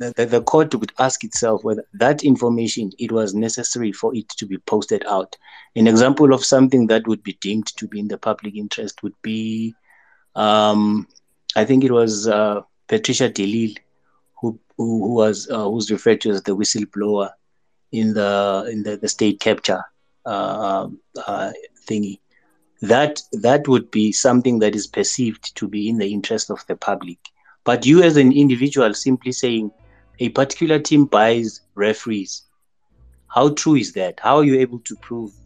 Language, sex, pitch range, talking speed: English, male, 105-125 Hz, 170 wpm